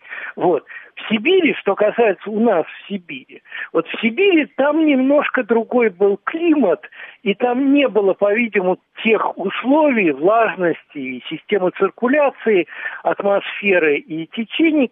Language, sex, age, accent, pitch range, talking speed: Russian, male, 60-79, native, 195-265 Hz, 125 wpm